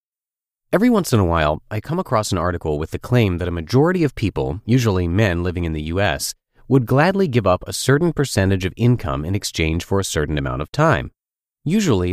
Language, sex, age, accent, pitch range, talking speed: English, male, 30-49, American, 90-125 Hz, 210 wpm